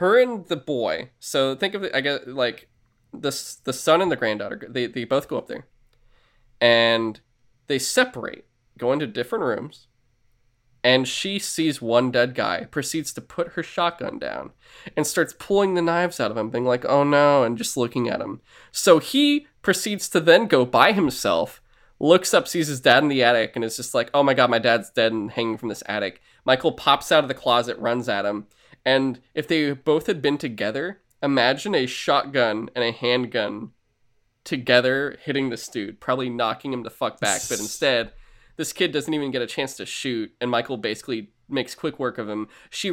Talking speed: 200 wpm